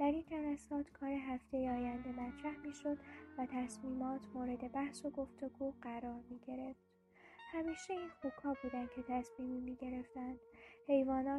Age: 10-29